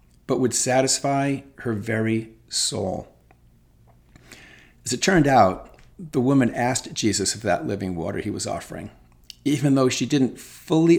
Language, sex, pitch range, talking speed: English, male, 95-130 Hz, 140 wpm